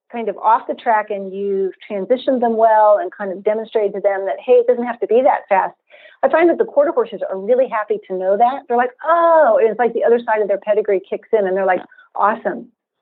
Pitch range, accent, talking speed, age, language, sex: 195-285 Hz, American, 250 wpm, 40-59, English, female